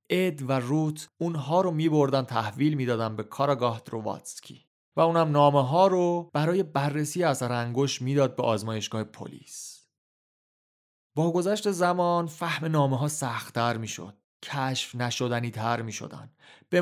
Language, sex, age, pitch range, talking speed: Persian, male, 30-49, 120-155 Hz, 135 wpm